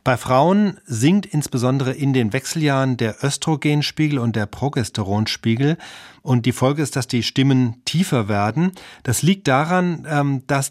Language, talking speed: German, 140 wpm